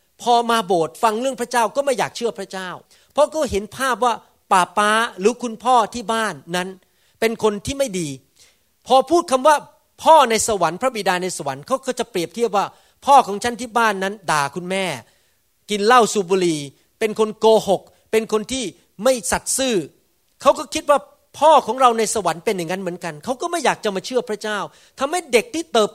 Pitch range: 175-240 Hz